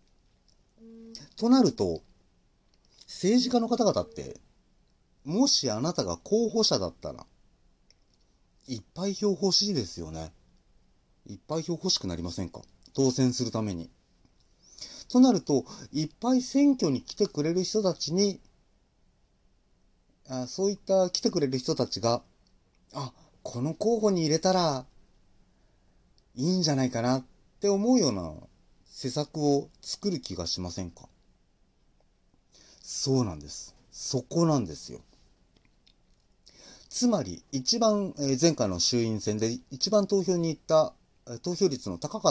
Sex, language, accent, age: male, Japanese, native, 40-59